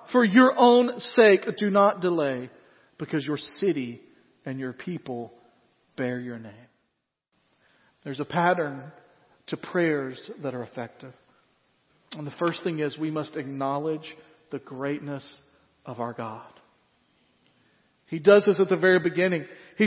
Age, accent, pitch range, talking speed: 40-59, American, 185-255 Hz, 135 wpm